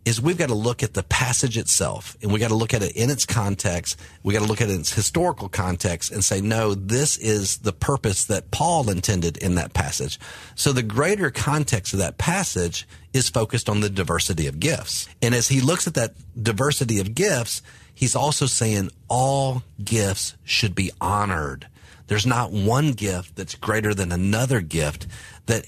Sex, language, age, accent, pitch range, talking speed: male, English, 40-59, American, 95-125 Hz, 195 wpm